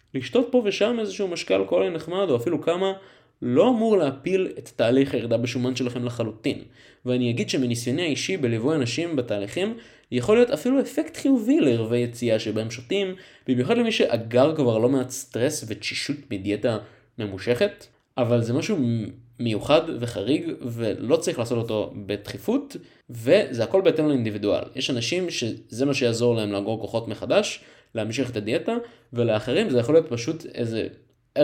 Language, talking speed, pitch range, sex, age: Hebrew, 145 wpm, 115-160 Hz, male, 20-39